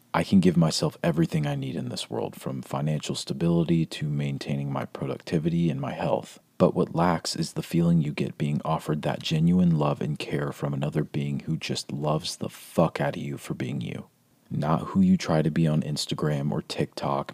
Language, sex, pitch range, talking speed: English, male, 75-95 Hz, 205 wpm